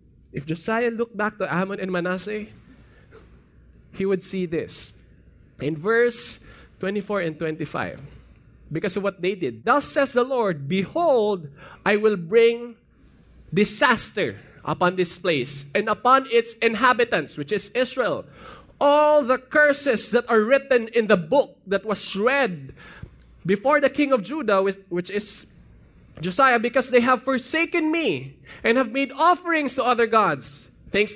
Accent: Filipino